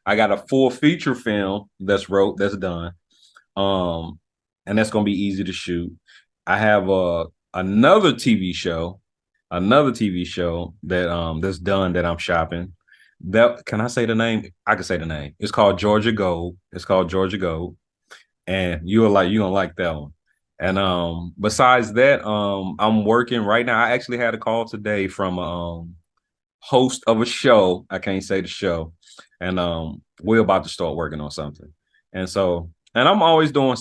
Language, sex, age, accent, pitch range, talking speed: English, male, 30-49, American, 85-105 Hz, 185 wpm